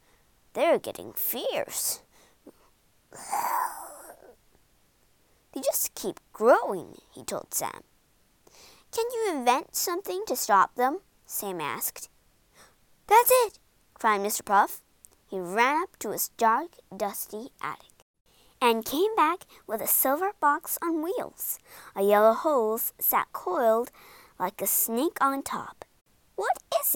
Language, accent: Chinese, American